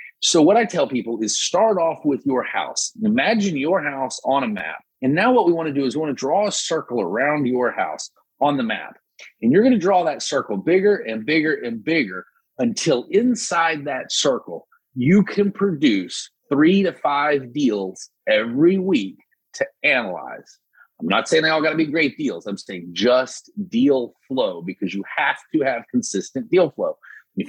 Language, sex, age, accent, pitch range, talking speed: English, male, 30-49, American, 130-210 Hz, 190 wpm